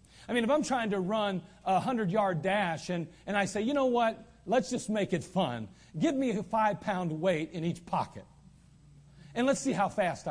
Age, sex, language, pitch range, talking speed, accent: 40-59, male, English, 170-225 Hz, 205 wpm, American